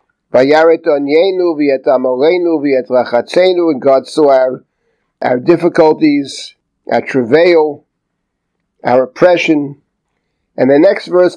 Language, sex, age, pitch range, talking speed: English, male, 50-69, 145-175 Hz, 110 wpm